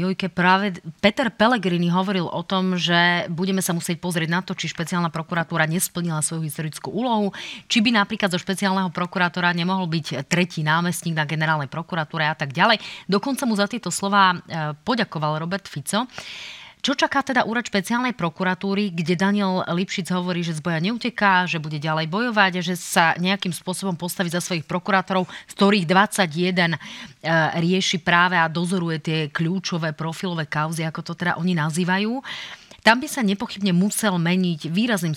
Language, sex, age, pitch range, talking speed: Slovak, female, 30-49, 165-195 Hz, 160 wpm